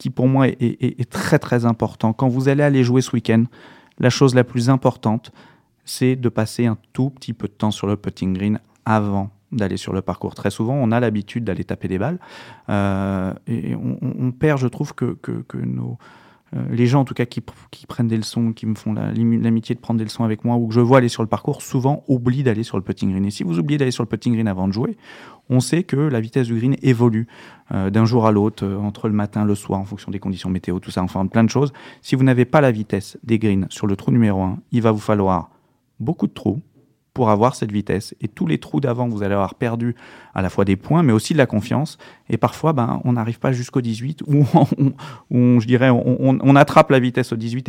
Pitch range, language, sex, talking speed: 105-130 Hz, French, male, 250 wpm